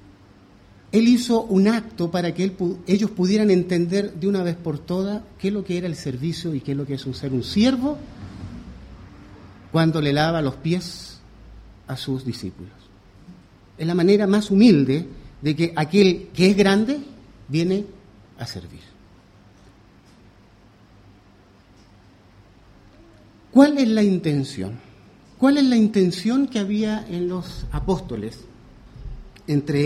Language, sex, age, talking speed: English, male, 50-69, 135 wpm